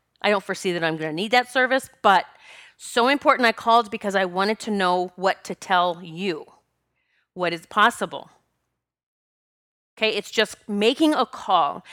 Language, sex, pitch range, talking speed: English, female, 190-240 Hz, 165 wpm